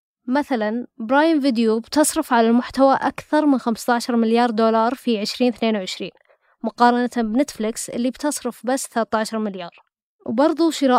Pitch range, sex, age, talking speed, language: 225-260 Hz, female, 20-39, 120 wpm, Arabic